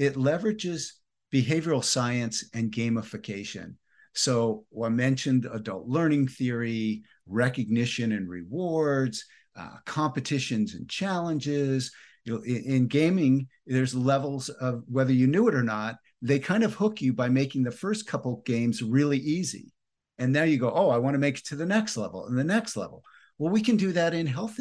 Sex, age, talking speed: male, 50-69, 170 wpm